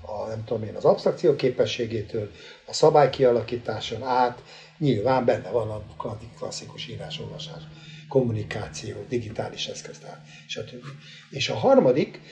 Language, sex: Hungarian, male